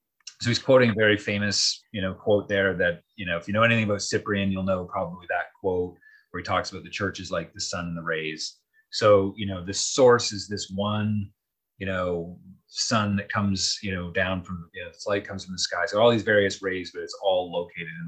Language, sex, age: English, male, 30-49